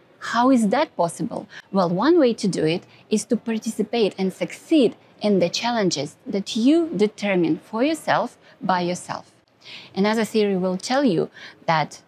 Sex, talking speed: female, 155 wpm